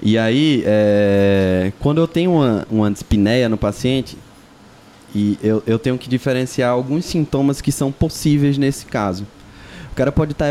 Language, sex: Portuguese, male